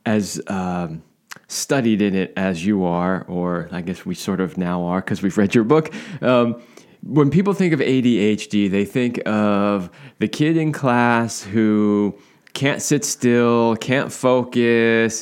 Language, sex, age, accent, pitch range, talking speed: English, male, 20-39, American, 100-130 Hz, 160 wpm